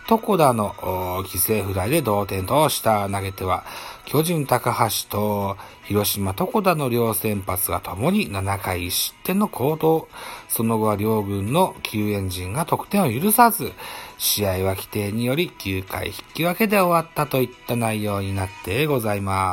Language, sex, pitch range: Japanese, male, 95-150 Hz